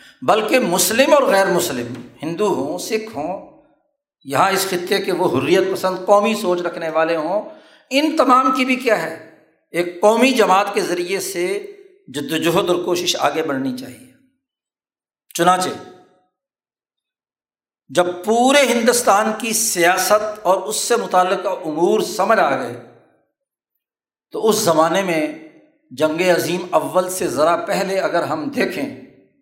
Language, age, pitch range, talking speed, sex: Urdu, 60-79, 185-265 Hz, 135 wpm, male